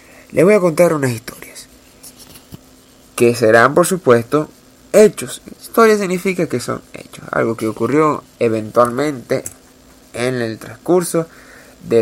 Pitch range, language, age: 115-150 Hz, Spanish, 30-49